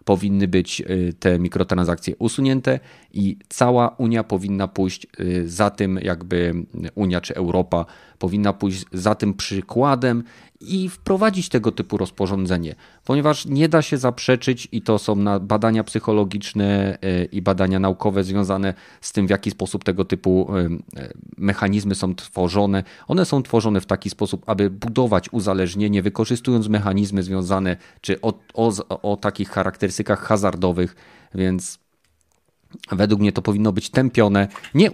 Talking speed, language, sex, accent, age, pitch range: 130 wpm, Polish, male, native, 30-49, 95-115 Hz